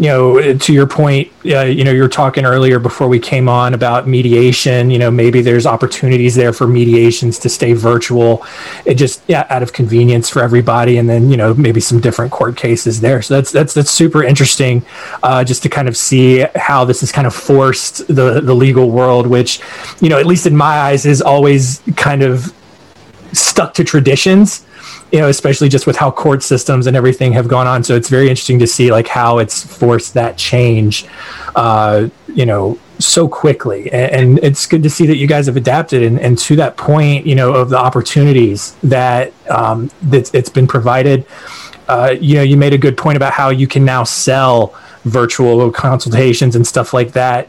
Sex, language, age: male, English, 20-39